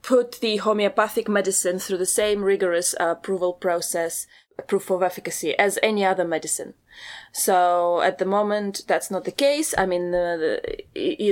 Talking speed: 165 wpm